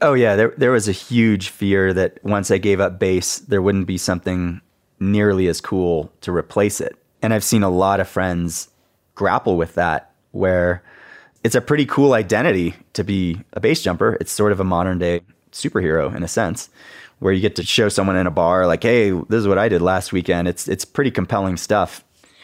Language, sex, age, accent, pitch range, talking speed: English, male, 30-49, American, 90-105 Hz, 205 wpm